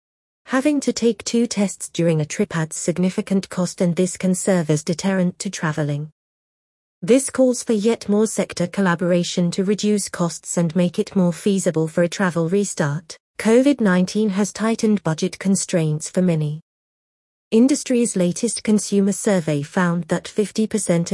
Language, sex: English, female